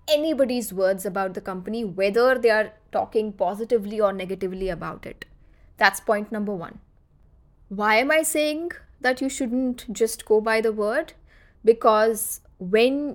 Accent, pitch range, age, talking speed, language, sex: Indian, 195-255 Hz, 20-39, 145 wpm, English, female